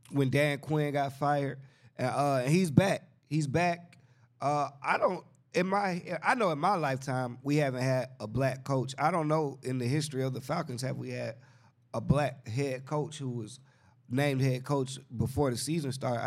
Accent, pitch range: American, 125-155 Hz